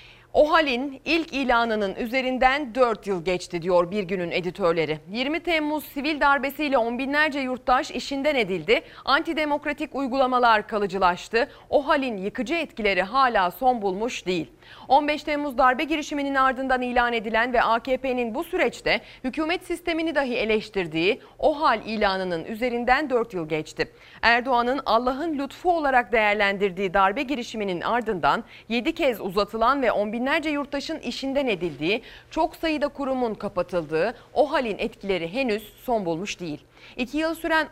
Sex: female